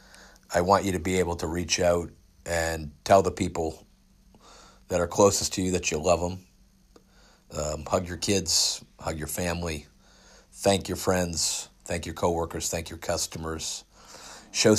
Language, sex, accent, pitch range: English, male, American, 80-100 Hz